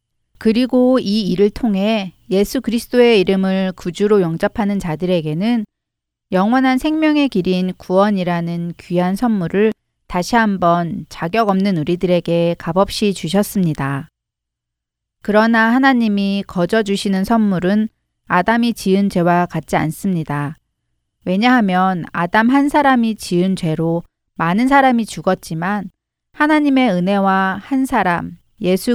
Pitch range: 175-225 Hz